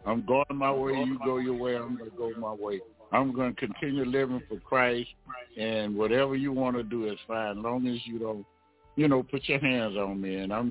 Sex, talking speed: male, 240 wpm